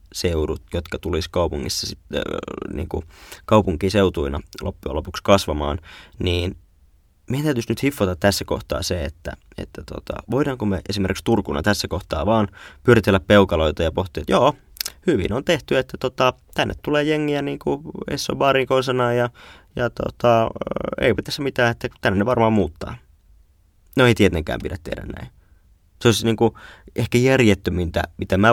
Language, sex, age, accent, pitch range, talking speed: Finnish, male, 20-39, native, 90-110 Hz, 145 wpm